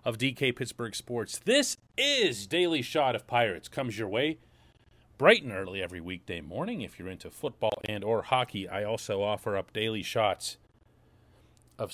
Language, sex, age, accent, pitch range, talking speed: English, male, 40-59, American, 115-170 Hz, 165 wpm